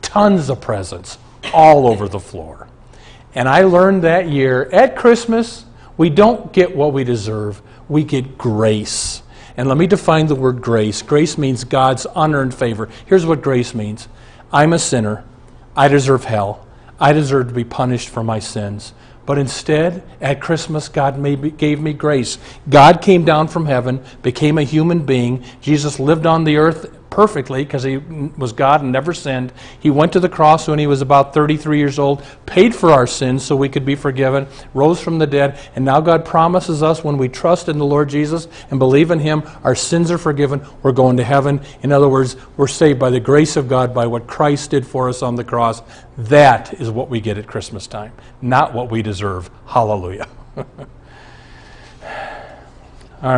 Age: 50-69